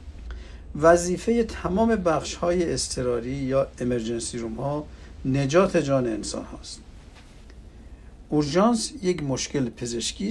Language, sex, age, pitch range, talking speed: Persian, male, 60-79, 100-150 Hz, 95 wpm